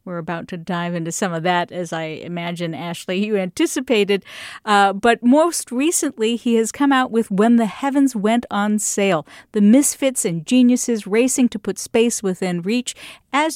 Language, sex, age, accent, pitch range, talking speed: English, female, 50-69, American, 195-255 Hz, 175 wpm